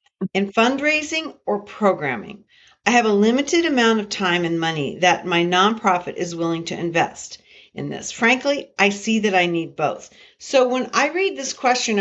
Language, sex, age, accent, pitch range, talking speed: English, female, 40-59, American, 175-235 Hz, 175 wpm